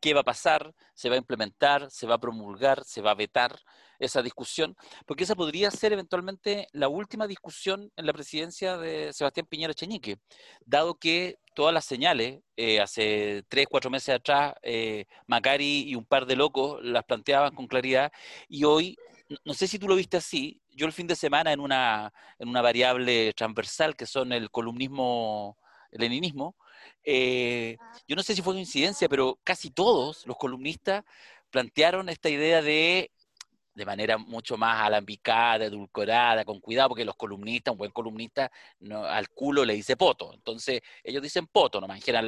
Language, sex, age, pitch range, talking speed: Spanish, male, 40-59, 120-175 Hz, 175 wpm